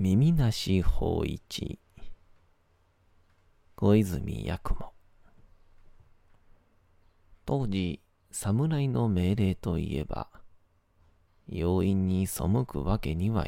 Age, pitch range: 40-59, 85-100 Hz